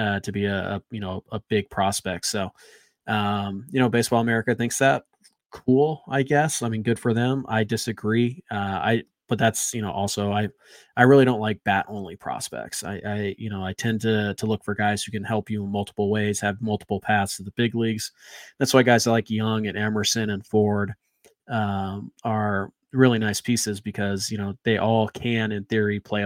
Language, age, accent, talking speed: English, 20-39, American, 210 wpm